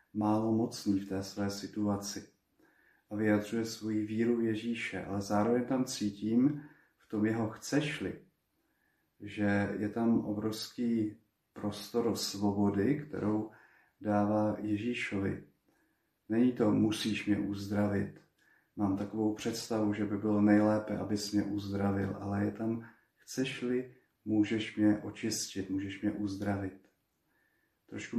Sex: male